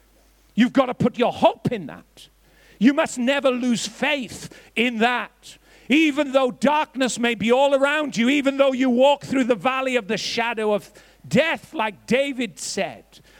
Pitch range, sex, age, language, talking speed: 225-280 Hz, male, 50-69, English, 170 wpm